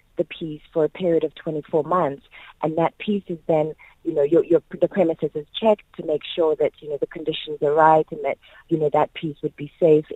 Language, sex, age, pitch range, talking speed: English, female, 30-49, 150-185 Hz, 235 wpm